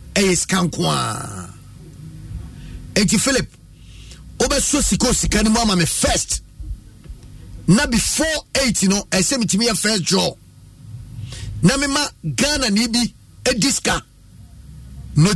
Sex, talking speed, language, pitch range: male, 115 wpm, English, 115-190 Hz